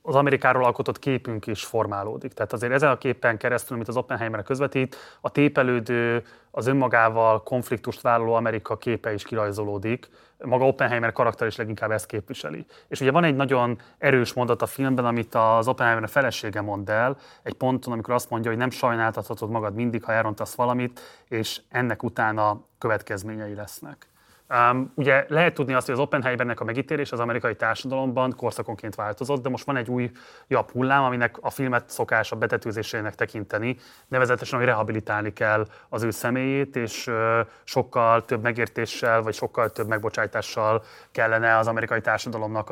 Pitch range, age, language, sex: 110-130 Hz, 30-49, Hungarian, male